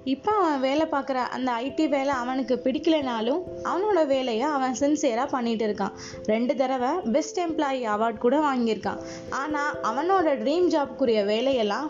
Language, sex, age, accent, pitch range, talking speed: English, female, 20-39, Indian, 235-300 Hz, 125 wpm